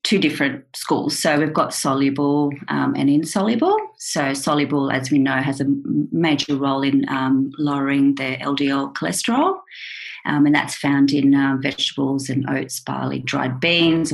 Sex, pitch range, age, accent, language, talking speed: female, 140-175 Hz, 40-59, Australian, English, 155 wpm